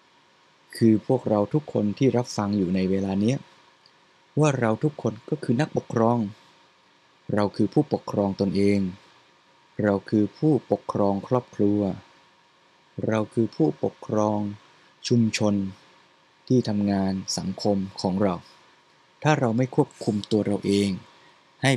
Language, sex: Thai, male